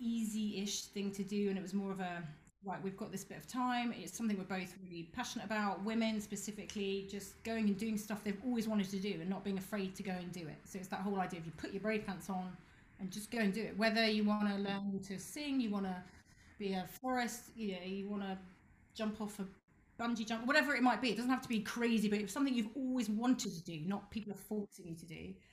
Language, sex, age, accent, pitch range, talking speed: English, female, 30-49, British, 185-220 Hz, 260 wpm